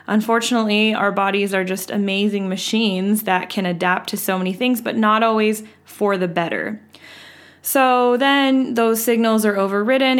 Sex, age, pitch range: female, 20-39, 190-240 Hz